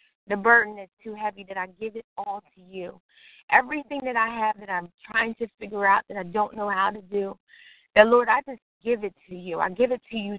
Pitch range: 200-245 Hz